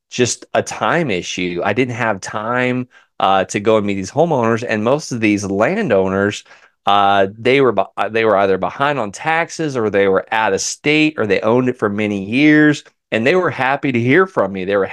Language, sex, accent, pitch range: English, male, American, 100-125 Hz